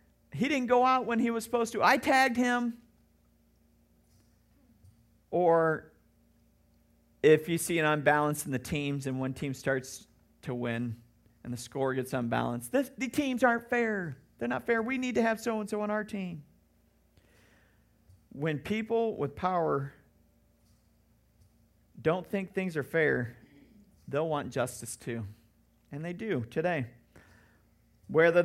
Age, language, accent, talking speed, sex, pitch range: 40-59, English, American, 135 wpm, male, 115-170 Hz